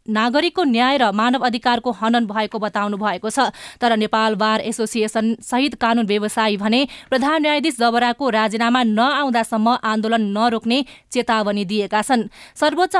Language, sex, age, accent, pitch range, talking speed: English, female, 20-39, Indian, 220-270 Hz, 140 wpm